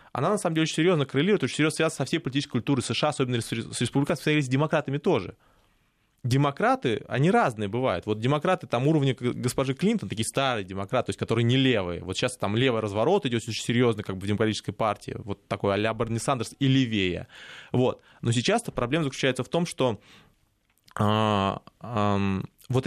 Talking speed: 180 wpm